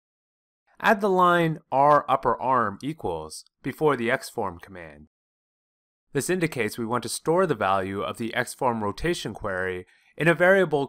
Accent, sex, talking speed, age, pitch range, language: American, male, 150 wpm, 30-49, 95-155 Hz, English